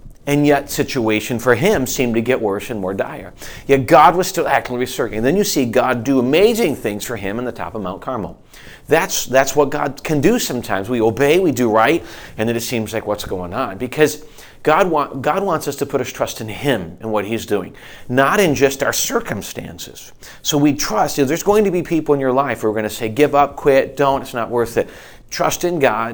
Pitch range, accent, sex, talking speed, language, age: 115-145 Hz, American, male, 235 wpm, English, 40-59